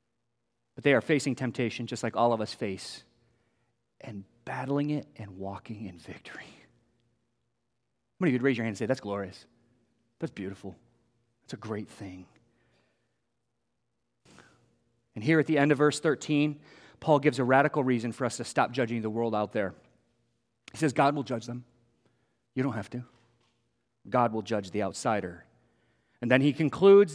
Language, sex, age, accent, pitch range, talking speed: English, male, 30-49, American, 120-150 Hz, 170 wpm